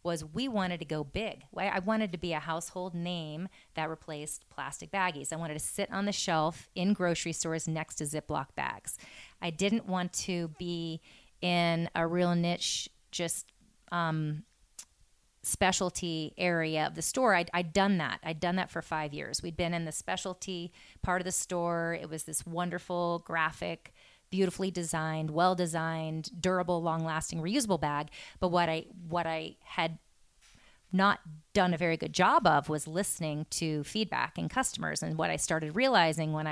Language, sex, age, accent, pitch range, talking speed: English, female, 30-49, American, 160-185 Hz, 175 wpm